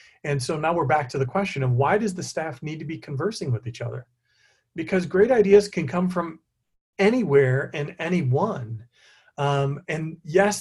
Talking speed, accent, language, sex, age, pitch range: 180 wpm, American, English, male, 40-59, 125-165 Hz